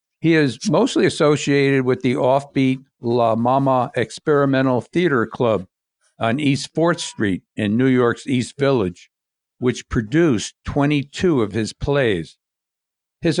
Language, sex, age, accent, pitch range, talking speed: English, male, 60-79, American, 110-140 Hz, 125 wpm